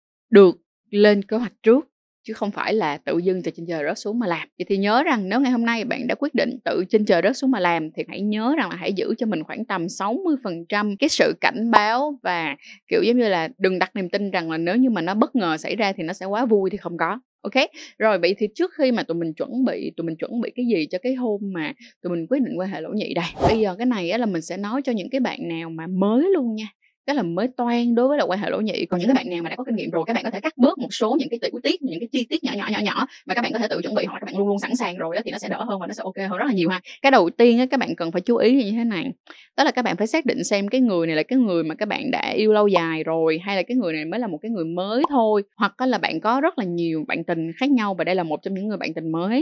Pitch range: 180-255 Hz